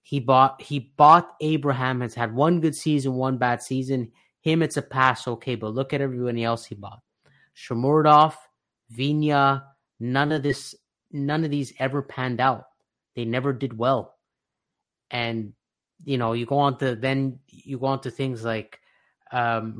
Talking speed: 165 wpm